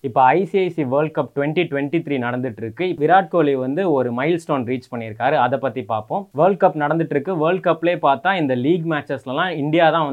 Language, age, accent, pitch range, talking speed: Tamil, 20-39, native, 135-180 Hz, 190 wpm